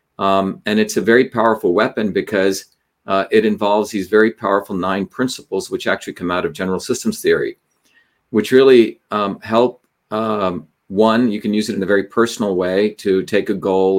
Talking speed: 185 wpm